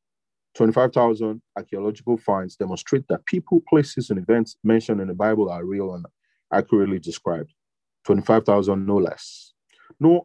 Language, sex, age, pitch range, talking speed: English, male, 30-49, 105-125 Hz, 130 wpm